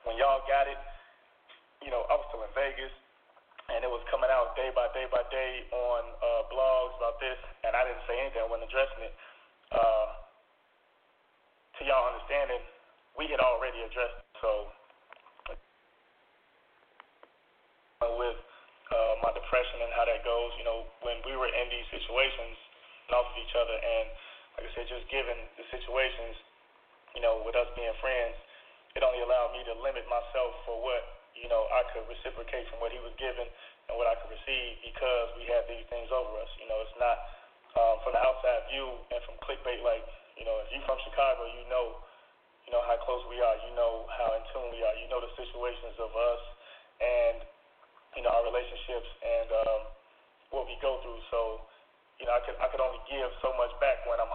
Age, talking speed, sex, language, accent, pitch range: 20-39, 195 wpm, male, English, American, 115-135 Hz